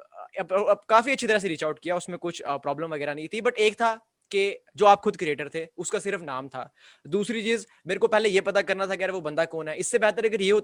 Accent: native